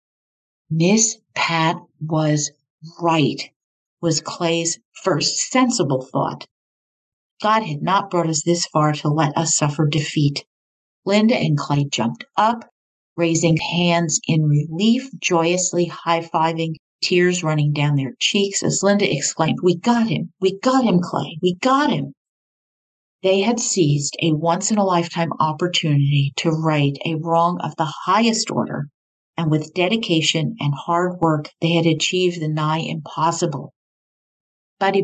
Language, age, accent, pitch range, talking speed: English, 50-69, American, 150-180 Hz, 135 wpm